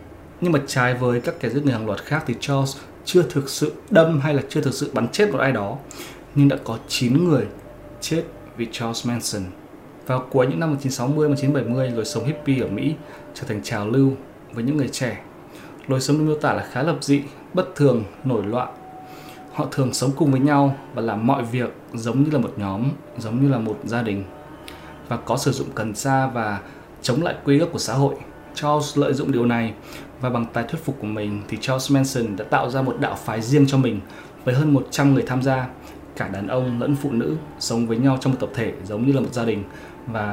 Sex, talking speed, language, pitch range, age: male, 225 wpm, Vietnamese, 115-145 Hz, 20-39